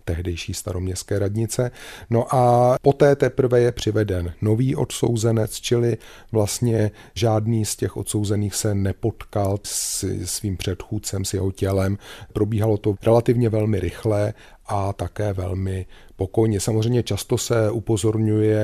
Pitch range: 100-115 Hz